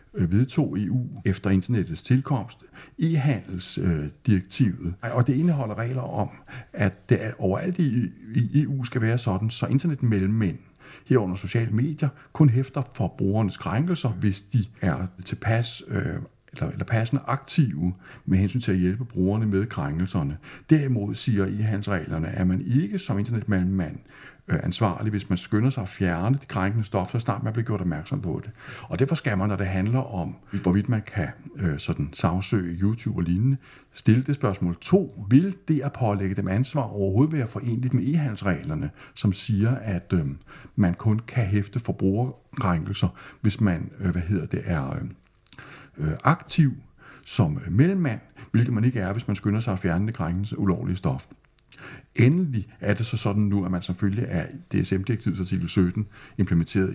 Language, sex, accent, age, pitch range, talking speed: Danish, male, native, 60-79, 95-130 Hz, 160 wpm